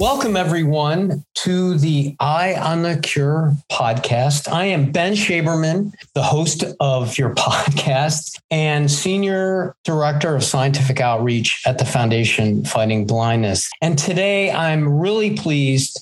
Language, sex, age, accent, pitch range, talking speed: English, male, 40-59, American, 135-175 Hz, 125 wpm